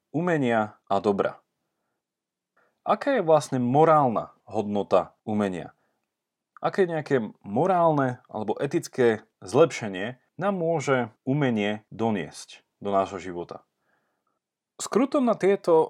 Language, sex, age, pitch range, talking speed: Slovak, male, 30-49, 115-160 Hz, 95 wpm